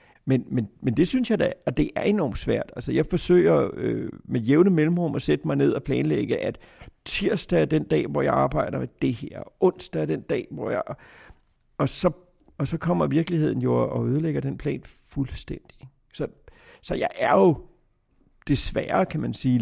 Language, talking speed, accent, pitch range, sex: Danish, 195 wpm, native, 120-155 Hz, male